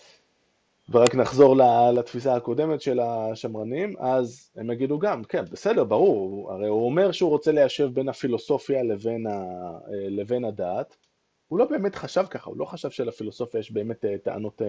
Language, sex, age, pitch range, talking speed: Hebrew, male, 20-39, 105-135 Hz, 145 wpm